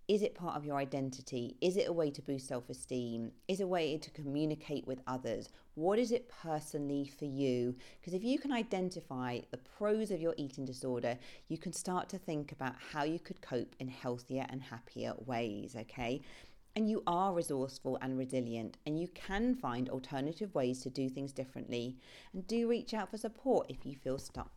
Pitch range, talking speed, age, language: 130-190 Hz, 195 wpm, 40-59, English